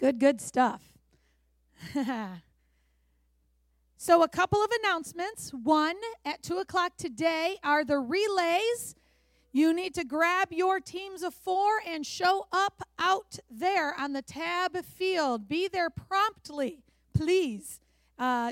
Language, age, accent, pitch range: English, 40-59, American, 250-340 Hz